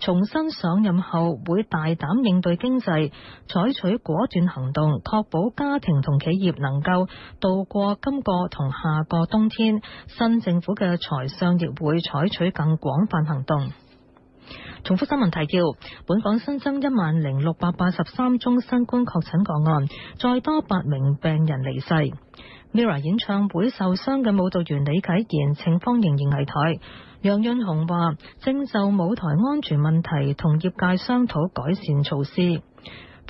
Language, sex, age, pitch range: Chinese, female, 20-39, 160-230 Hz